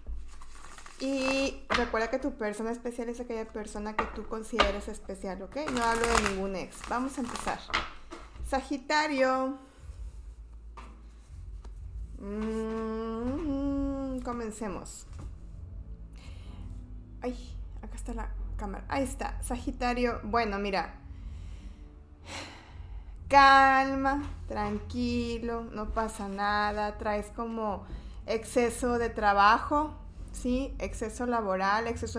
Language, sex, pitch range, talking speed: Spanish, female, 200-245 Hz, 95 wpm